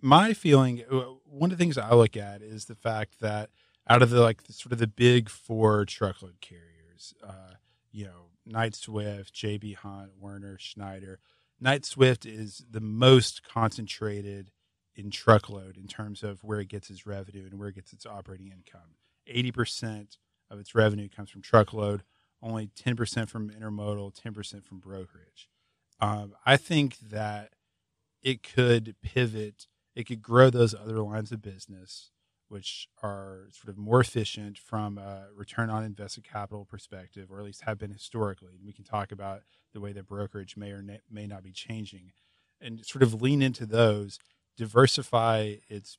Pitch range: 100-115 Hz